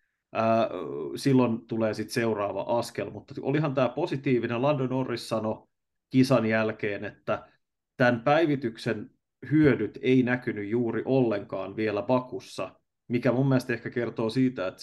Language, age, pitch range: Finnish, 20-39, 110-130 Hz